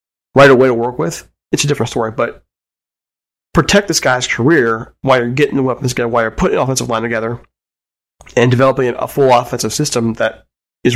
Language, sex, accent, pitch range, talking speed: English, male, American, 110-135 Hz, 190 wpm